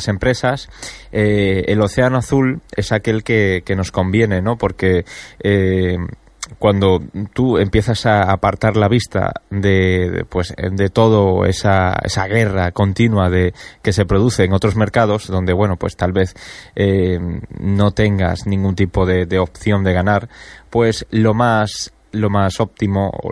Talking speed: 150 wpm